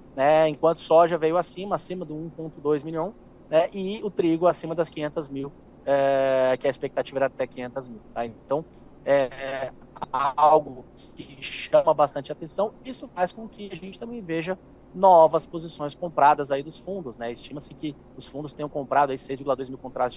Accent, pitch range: Brazilian, 135-170 Hz